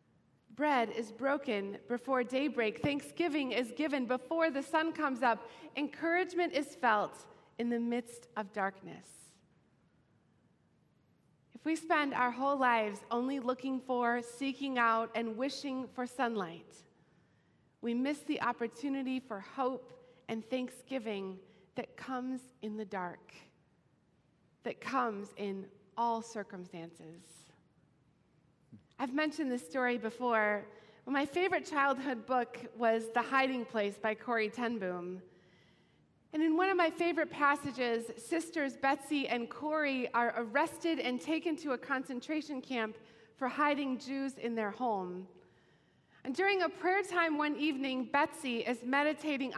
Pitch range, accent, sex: 225-285 Hz, American, female